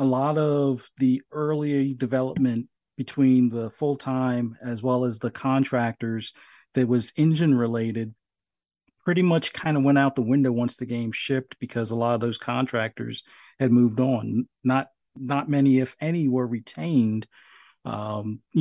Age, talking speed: 40-59, 155 wpm